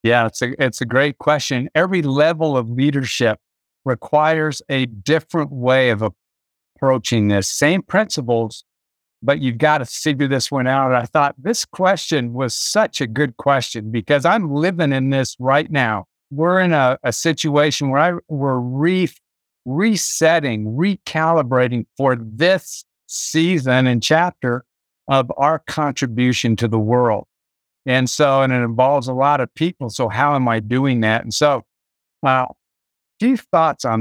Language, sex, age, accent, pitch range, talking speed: English, male, 60-79, American, 115-155 Hz, 155 wpm